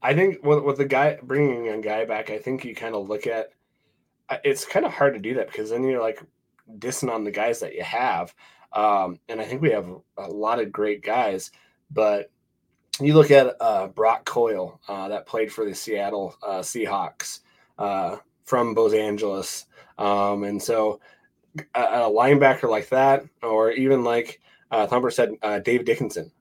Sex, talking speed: male, 185 wpm